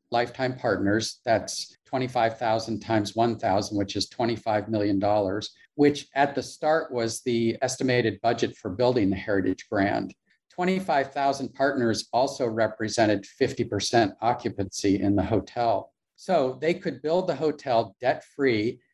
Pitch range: 105-130 Hz